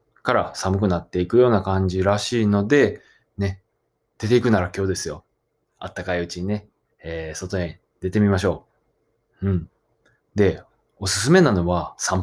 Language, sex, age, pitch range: Japanese, male, 20-39, 90-130 Hz